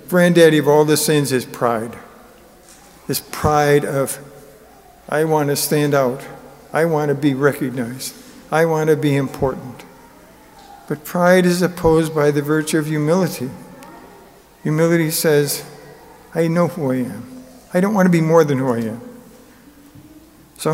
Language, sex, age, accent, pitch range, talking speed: English, male, 50-69, American, 145-180 Hz, 155 wpm